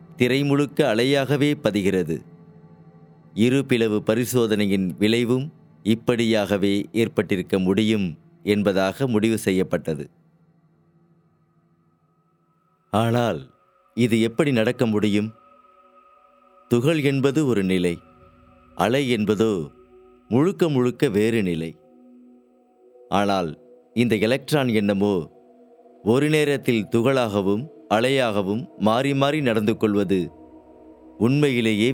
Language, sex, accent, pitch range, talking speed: Tamil, male, native, 95-125 Hz, 75 wpm